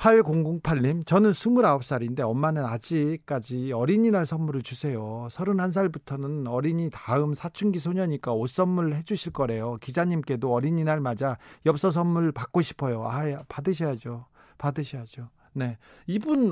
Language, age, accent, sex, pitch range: Korean, 40-59, native, male, 130-185 Hz